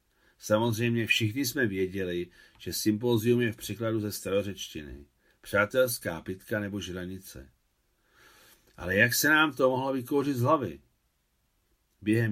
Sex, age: male, 50-69